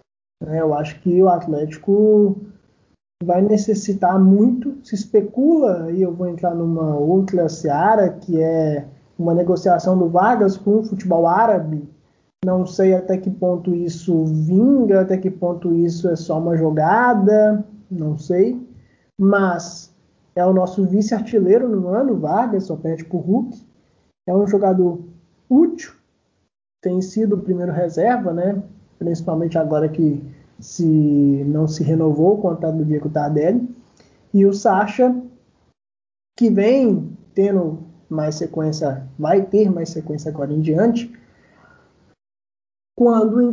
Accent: Brazilian